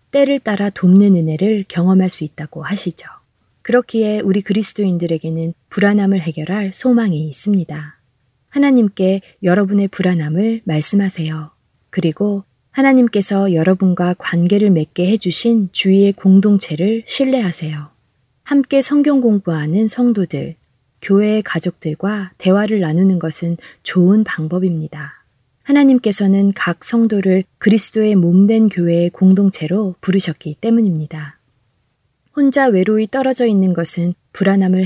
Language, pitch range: Korean, 170-210 Hz